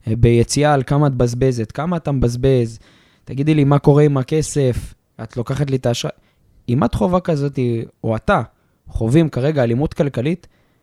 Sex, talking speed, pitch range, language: male, 160 wpm, 115-155 Hz, Hebrew